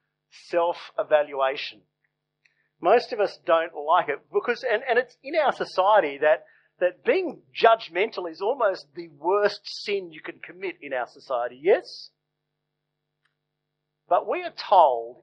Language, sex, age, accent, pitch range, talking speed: English, male, 50-69, Australian, 160-230 Hz, 135 wpm